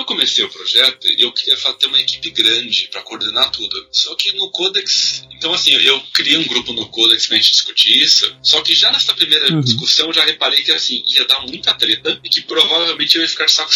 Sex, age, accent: male, 40-59, Brazilian